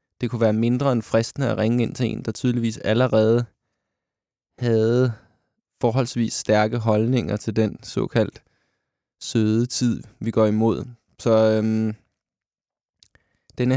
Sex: male